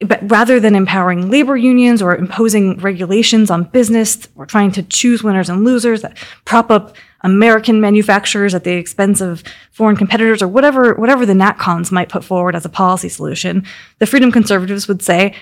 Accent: American